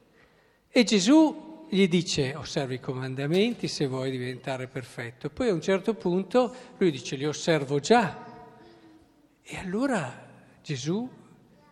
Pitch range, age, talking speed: 140-220 Hz, 50-69, 125 wpm